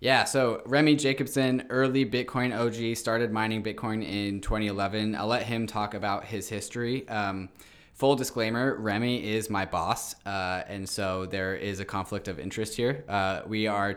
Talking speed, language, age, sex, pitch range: 170 wpm, English, 20-39, male, 95-115 Hz